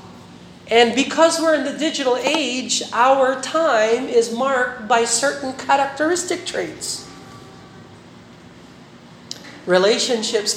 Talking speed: 90 wpm